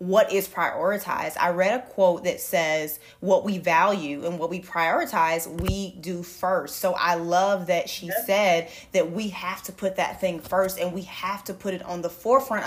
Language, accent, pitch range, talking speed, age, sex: English, American, 175-215 Hz, 200 wpm, 20-39, female